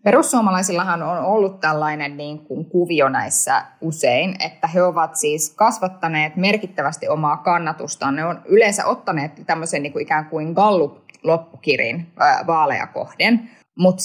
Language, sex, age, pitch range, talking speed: Finnish, female, 20-39, 155-205 Hz, 130 wpm